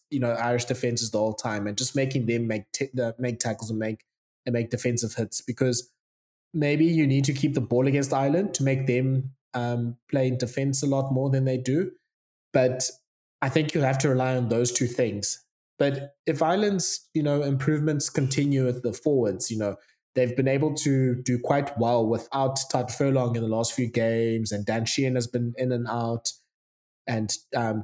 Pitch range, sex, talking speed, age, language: 115-135 Hz, male, 200 wpm, 20-39, English